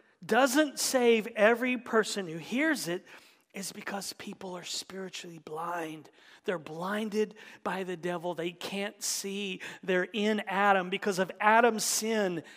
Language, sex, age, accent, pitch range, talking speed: English, male, 40-59, American, 155-210 Hz, 135 wpm